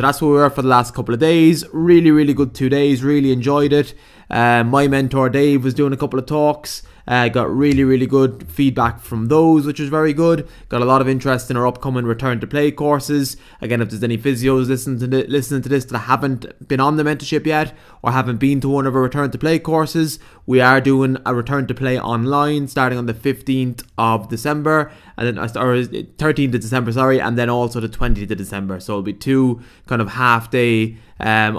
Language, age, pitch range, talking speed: English, 20-39, 115-145 Hz, 225 wpm